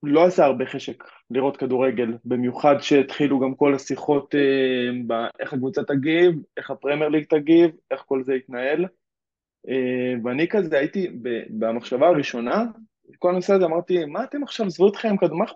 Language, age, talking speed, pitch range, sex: Hebrew, 20-39, 145 wpm, 130-155 Hz, male